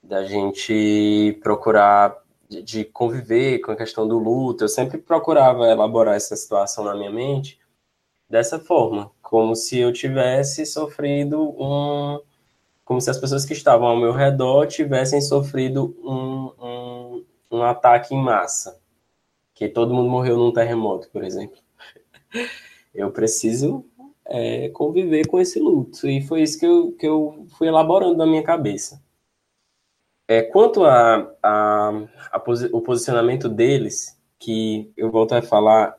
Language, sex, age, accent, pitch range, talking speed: Portuguese, male, 10-29, Brazilian, 115-145 Hz, 135 wpm